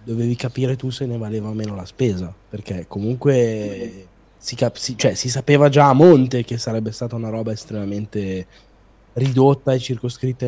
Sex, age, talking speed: male, 20-39, 170 wpm